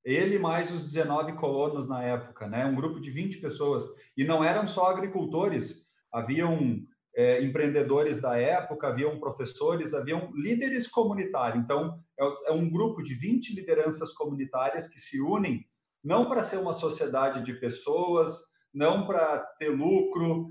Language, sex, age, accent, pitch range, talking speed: Portuguese, male, 40-59, Brazilian, 145-185 Hz, 150 wpm